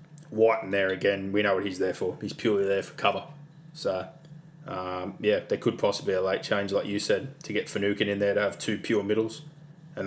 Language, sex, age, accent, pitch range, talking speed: English, male, 20-39, Australian, 100-155 Hz, 230 wpm